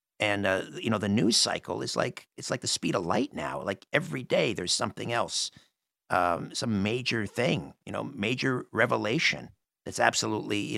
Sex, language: male, English